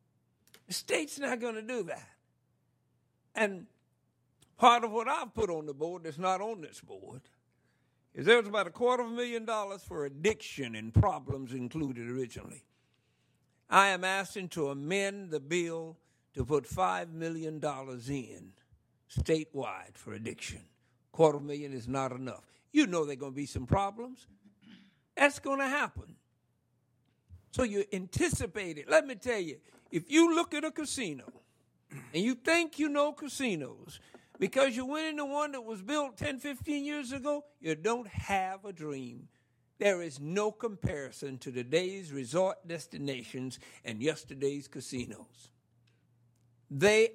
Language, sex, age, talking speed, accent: English, male, 60-79, 155 wpm, American